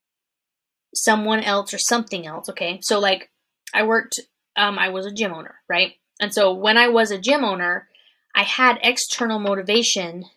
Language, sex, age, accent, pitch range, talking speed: English, female, 20-39, American, 195-240 Hz, 170 wpm